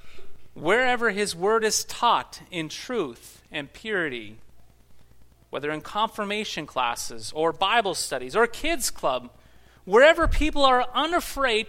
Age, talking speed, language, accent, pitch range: 30-49, 120 wpm, English, American, 150-225 Hz